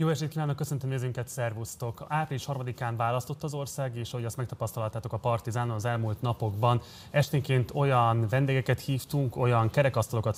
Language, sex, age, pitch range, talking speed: Hungarian, male, 30-49, 115-135 Hz, 150 wpm